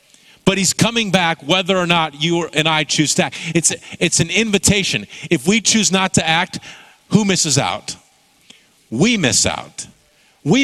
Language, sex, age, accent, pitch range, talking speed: English, male, 50-69, American, 145-190 Hz, 170 wpm